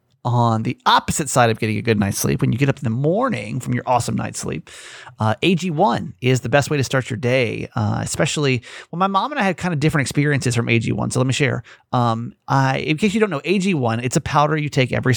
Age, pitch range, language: 30-49, 125-165 Hz, English